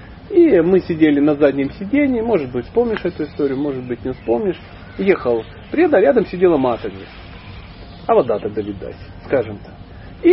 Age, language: 40-59, Russian